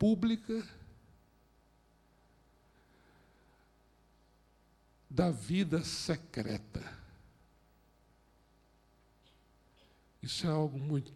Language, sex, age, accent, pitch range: Portuguese, male, 60-79, Brazilian, 155-215 Hz